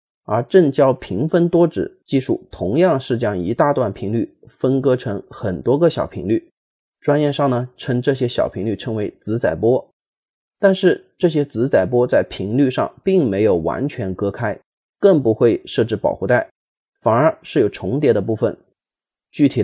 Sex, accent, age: male, native, 30-49